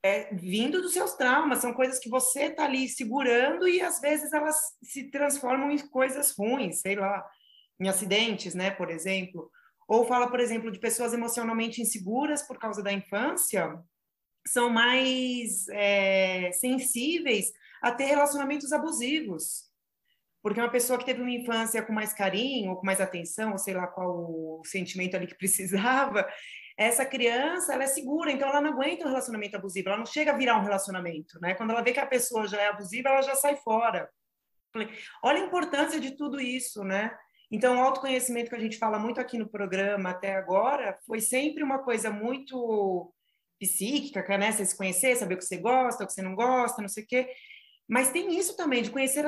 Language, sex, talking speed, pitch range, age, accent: Portuguese, female, 185 wpm, 200-270 Hz, 20-39, Brazilian